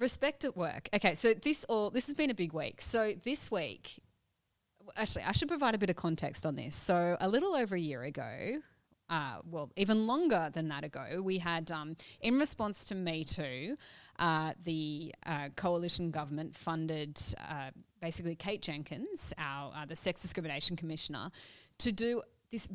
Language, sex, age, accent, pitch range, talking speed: English, female, 20-39, Australian, 155-205 Hz, 175 wpm